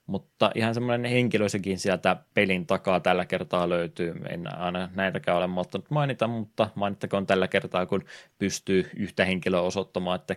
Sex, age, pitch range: male, 20-39, 90-100 Hz